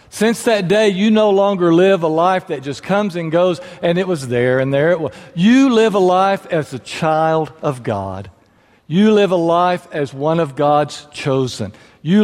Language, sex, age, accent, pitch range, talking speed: English, male, 60-79, American, 140-200 Hz, 200 wpm